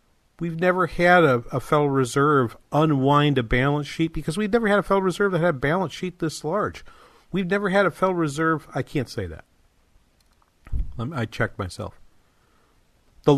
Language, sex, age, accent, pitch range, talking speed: English, male, 50-69, American, 115-155 Hz, 185 wpm